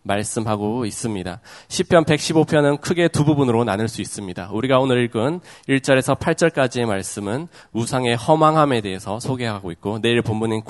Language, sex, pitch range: Korean, male, 110-145 Hz